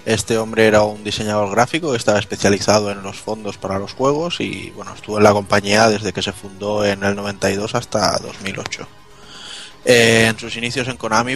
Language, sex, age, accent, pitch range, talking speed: Spanish, male, 20-39, Spanish, 105-125 Hz, 185 wpm